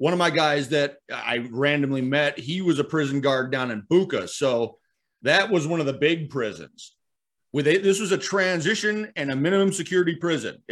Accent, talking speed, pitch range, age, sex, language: American, 195 wpm, 140-170 Hz, 30-49, male, English